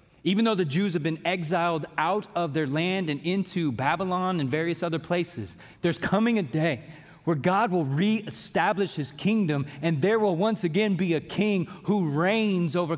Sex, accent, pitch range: male, American, 130-190 Hz